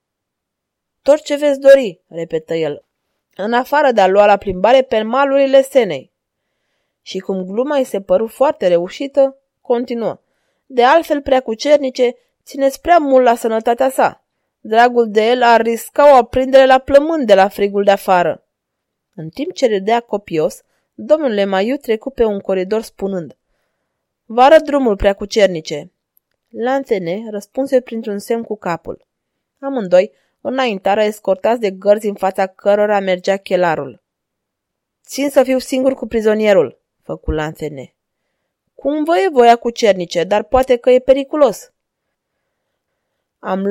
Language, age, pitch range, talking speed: Romanian, 20-39, 200-270 Hz, 140 wpm